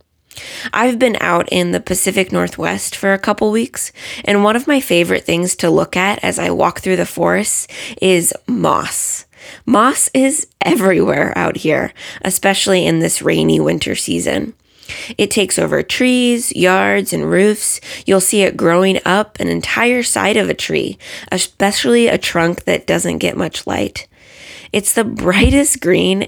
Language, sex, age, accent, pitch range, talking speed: English, female, 20-39, American, 170-225 Hz, 160 wpm